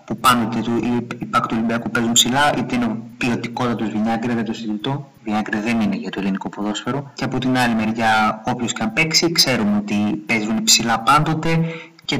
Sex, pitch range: male, 115-155 Hz